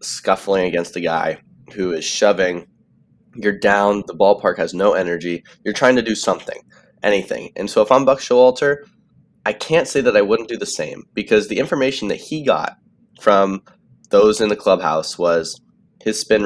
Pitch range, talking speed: 95-125 Hz, 180 wpm